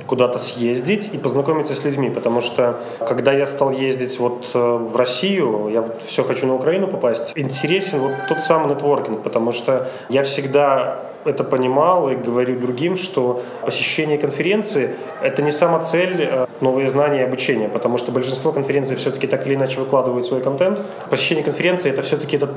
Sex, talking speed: male, 175 wpm